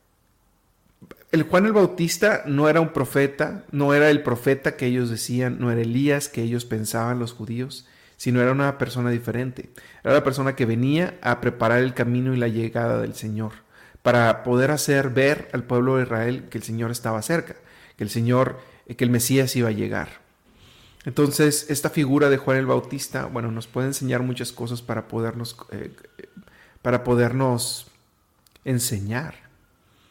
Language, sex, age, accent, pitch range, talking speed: Spanish, male, 40-59, Mexican, 120-145 Hz, 165 wpm